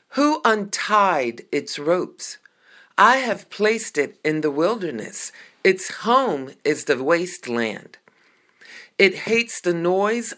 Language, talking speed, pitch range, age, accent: English, 115 wpm, 165-230 Hz, 50-69, American